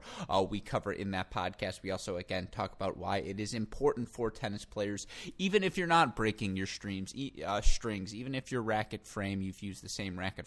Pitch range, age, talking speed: 95-115 Hz, 20-39, 220 wpm